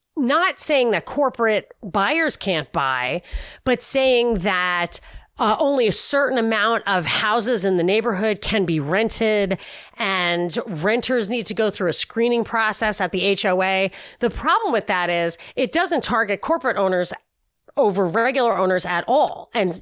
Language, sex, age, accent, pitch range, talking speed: English, female, 30-49, American, 190-250 Hz, 155 wpm